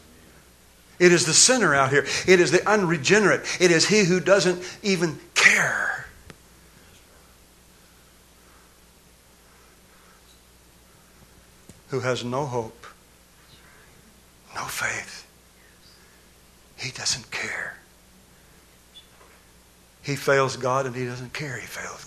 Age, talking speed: 60-79, 95 wpm